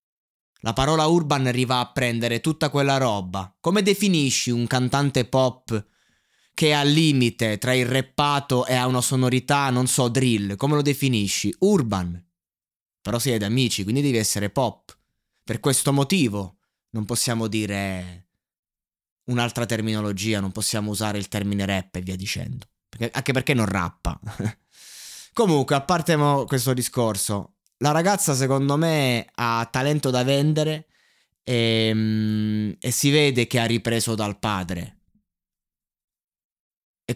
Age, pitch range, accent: 20-39, 105-140 Hz, native